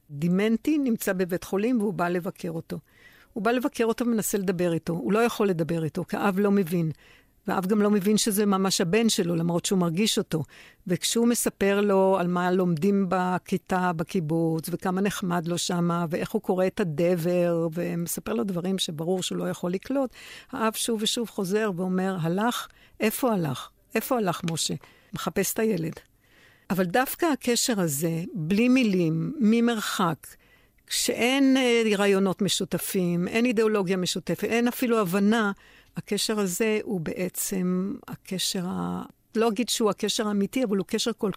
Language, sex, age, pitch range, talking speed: Hebrew, female, 60-79, 180-220 Hz, 155 wpm